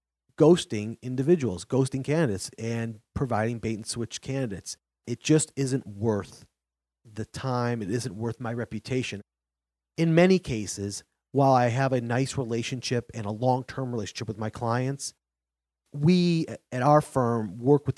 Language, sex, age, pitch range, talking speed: English, male, 30-49, 105-135 Hz, 135 wpm